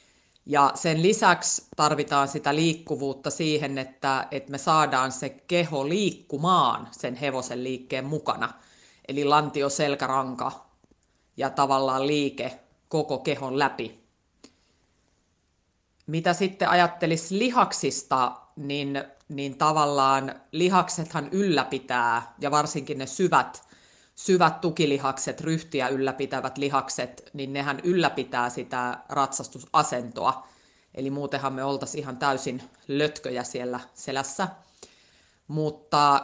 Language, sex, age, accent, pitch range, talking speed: Finnish, female, 30-49, native, 130-155 Hz, 100 wpm